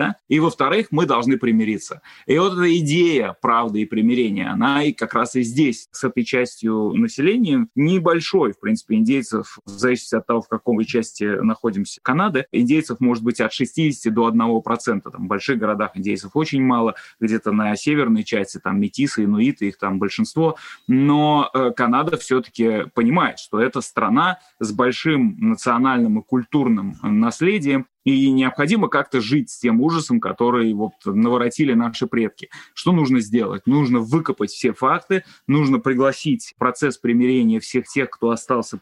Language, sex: Russian, male